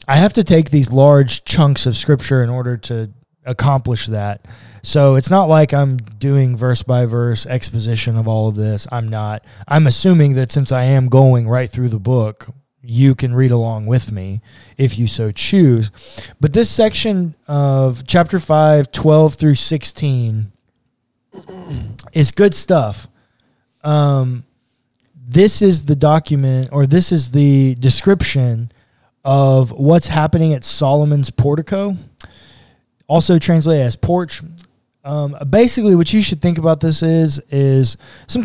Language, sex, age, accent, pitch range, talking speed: English, male, 20-39, American, 125-160 Hz, 145 wpm